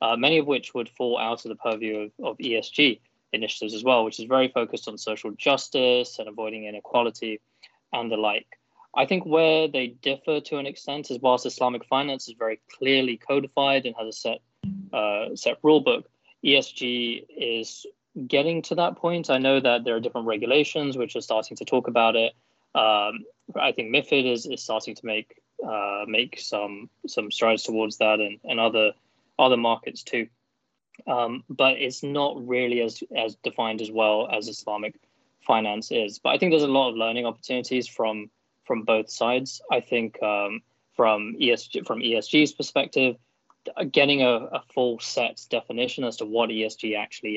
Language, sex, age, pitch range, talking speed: English, male, 20-39, 110-130 Hz, 180 wpm